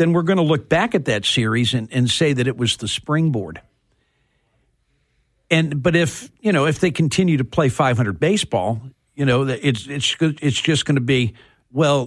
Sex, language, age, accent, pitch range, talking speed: male, English, 50-69, American, 115-150 Hz, 200 wpm